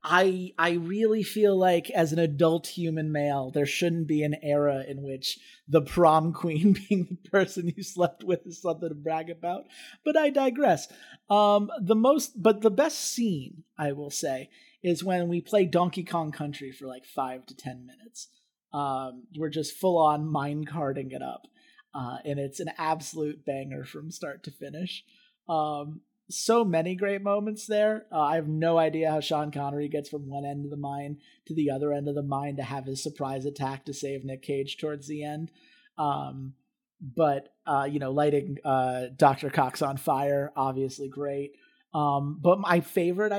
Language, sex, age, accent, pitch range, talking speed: English, male, 30-49, American, 145-190 Hz, 185 wpm